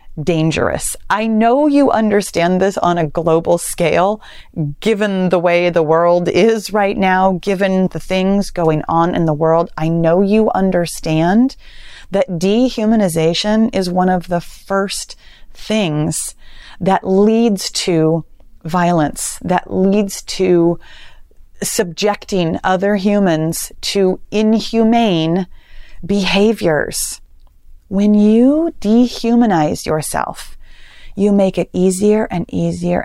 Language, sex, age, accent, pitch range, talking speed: English, female, 30-49, American, 160-200 Hz, 110 wpm